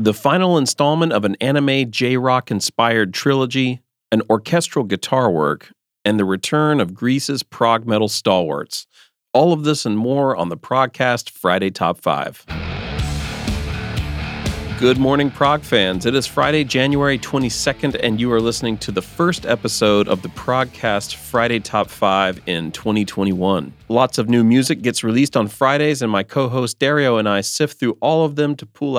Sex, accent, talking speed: male, American, 160 wpm